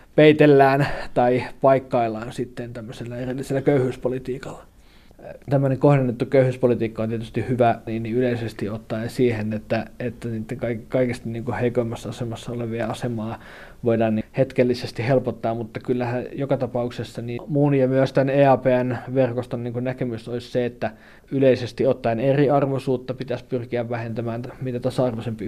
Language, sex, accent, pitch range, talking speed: Finnish, male, native, 115-130 Hz, 125 wpm